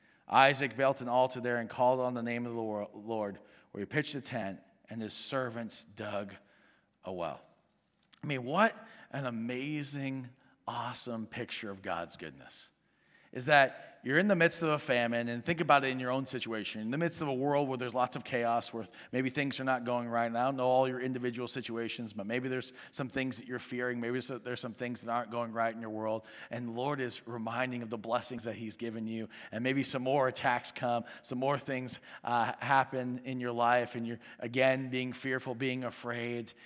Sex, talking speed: male, 210 wpm